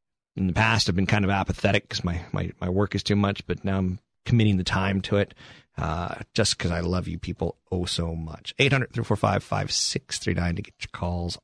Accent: American